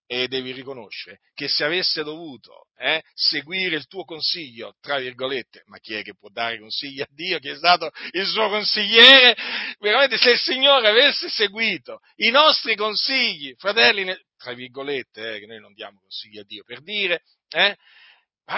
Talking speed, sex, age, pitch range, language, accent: 170 wpm, male, 50-69, 140-225 Hz, Italian, native